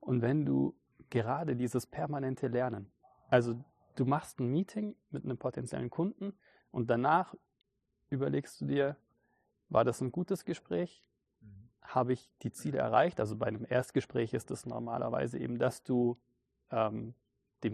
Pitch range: 115-135 Hz